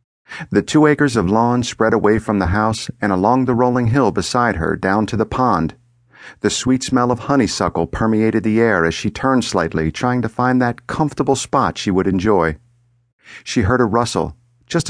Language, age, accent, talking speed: English, 50-69, American, 190 wpm